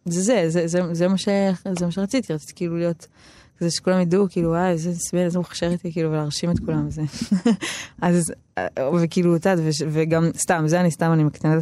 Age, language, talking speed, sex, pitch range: 20-39, Hebrew, 165 wpm, female, 155-190 Hz